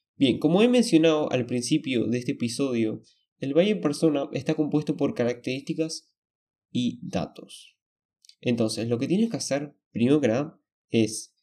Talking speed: 145 wpm